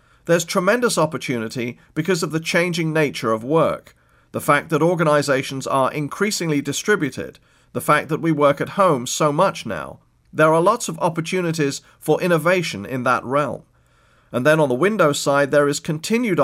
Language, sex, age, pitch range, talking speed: English, male, 40-59, 135-165 Hz, 170 wpm